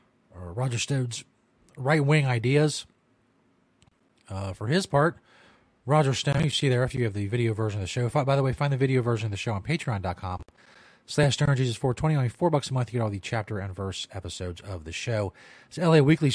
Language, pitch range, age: English, 110-140 Hz, 30-49